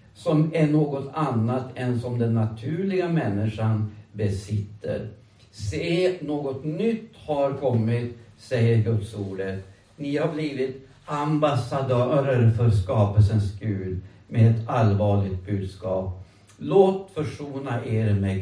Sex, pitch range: male, 105-150 Hz